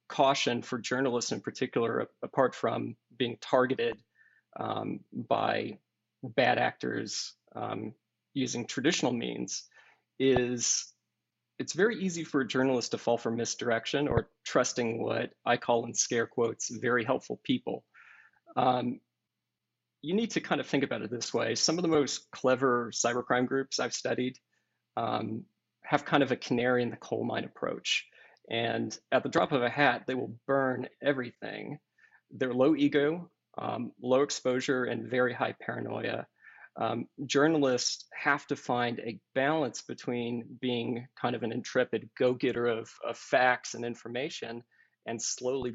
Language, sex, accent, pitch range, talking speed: English, male, American, 120-135 Hz, 145 wpm